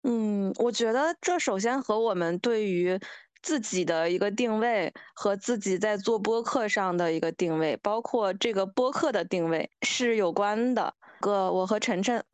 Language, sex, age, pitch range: Chinese, female, 20-39, 190-255 Hz